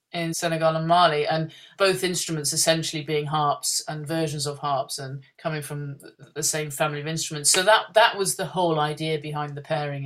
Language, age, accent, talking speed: English, 30-49, British, 190 wpm